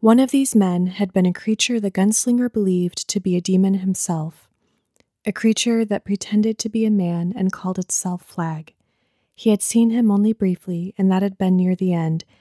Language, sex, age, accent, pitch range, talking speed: English, female, 20-39, American, 180-215 Hz, 200 wpm